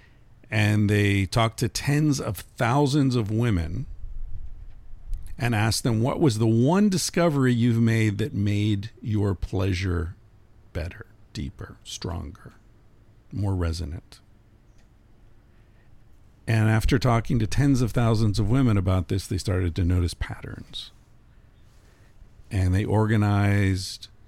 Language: English